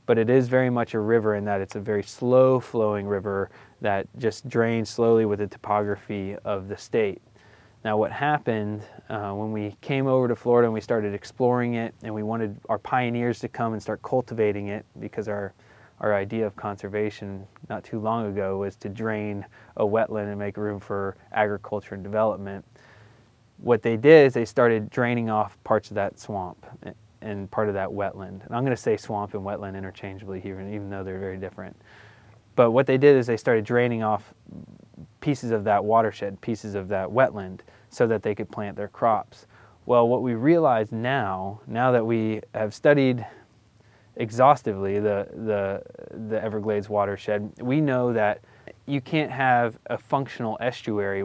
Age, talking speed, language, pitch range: 20-39, 180 wpm, English, 100-120 Hz